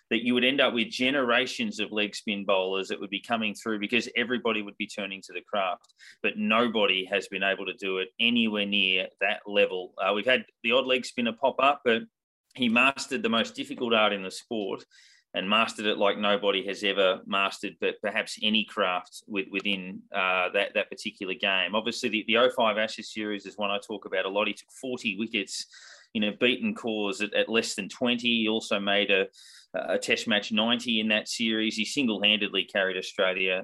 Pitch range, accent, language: 100-115 Hz, Australian, English